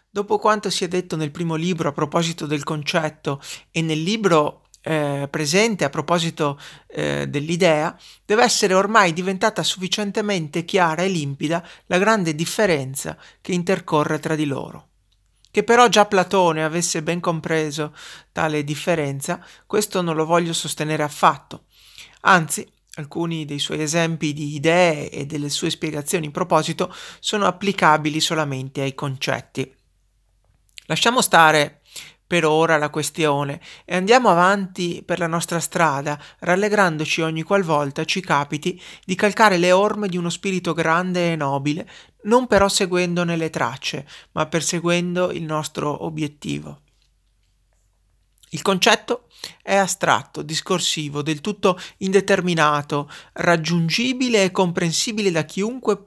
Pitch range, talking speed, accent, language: 150-185 Hz, 130 wpm, native, Italian